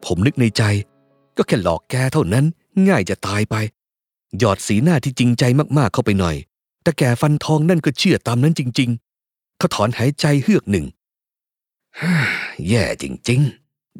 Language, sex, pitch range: Thai, male, 115-160 Hz